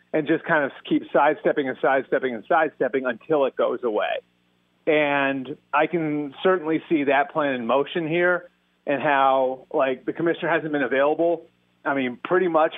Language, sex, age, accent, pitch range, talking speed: English, male, 30-49, American, 130-155 Hz, 170 wpm